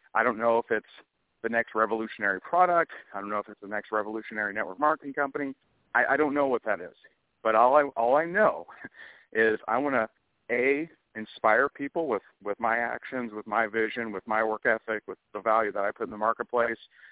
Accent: American